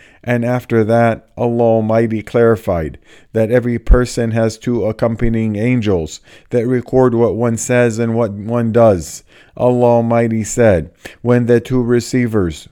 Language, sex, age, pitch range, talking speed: English, male, 50-69, 110-120 Hz, 135 wpm